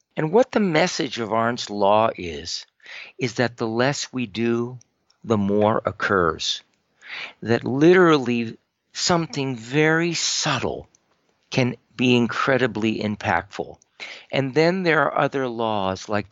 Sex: male